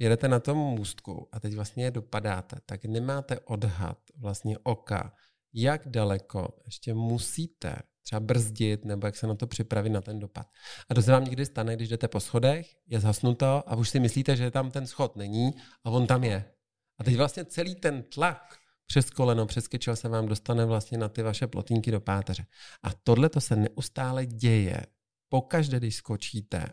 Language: Czech